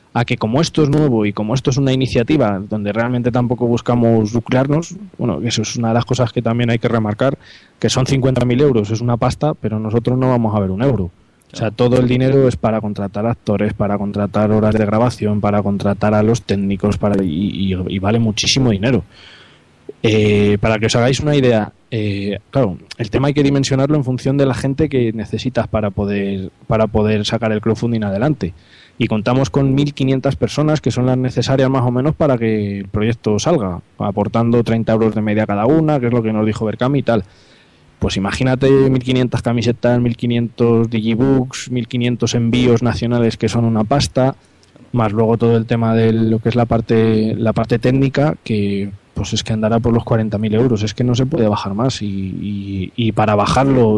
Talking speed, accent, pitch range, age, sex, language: 200 wpm, Spanish, 105-125 Hz, 20-39, male, Spanish